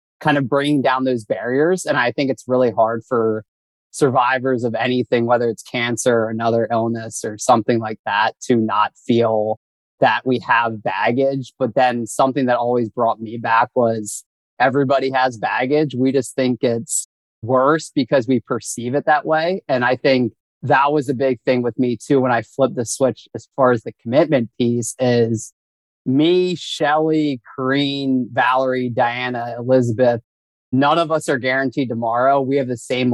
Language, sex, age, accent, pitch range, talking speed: English, male, 30-49, American, 115-135 Hz, 170 wpm